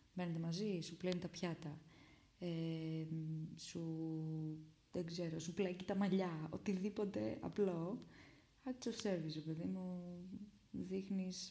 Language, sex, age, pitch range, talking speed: Greek, female, 20-39, 160-205 Hz, 115 wpm